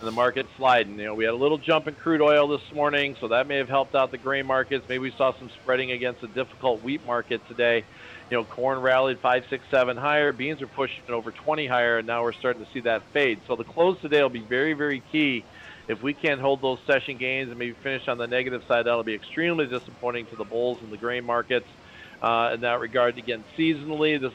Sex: male